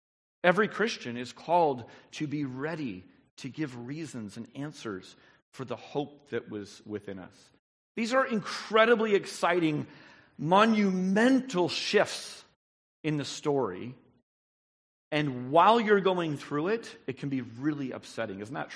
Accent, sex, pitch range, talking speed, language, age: American, male, 130-175 Hz, 130 wpm, English, 40-59